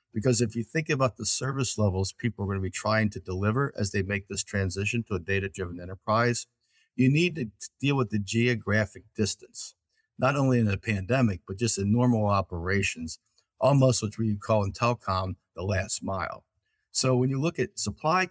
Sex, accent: male, American